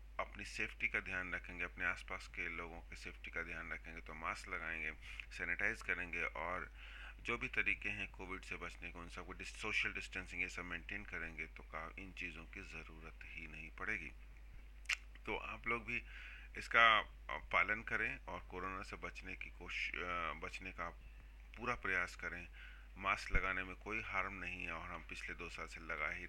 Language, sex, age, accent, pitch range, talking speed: English, male, 30-49, Indian, 85-105 Hz, 160 wpm